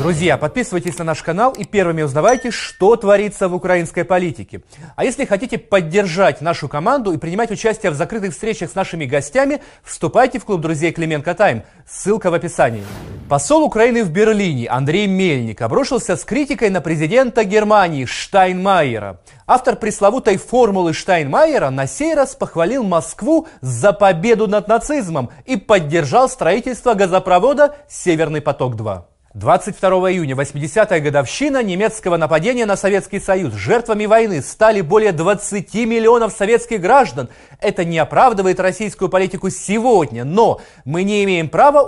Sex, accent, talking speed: male, native, 140 wpm